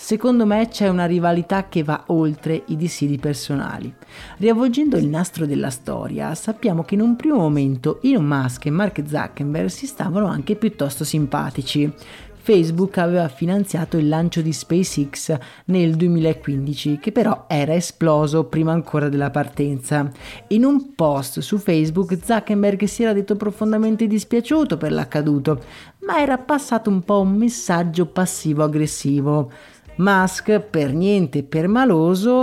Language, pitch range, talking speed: Italian, 150-200 Hz, 140 wpm